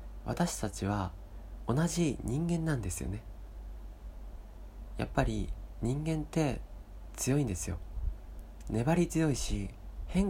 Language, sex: Japanese, male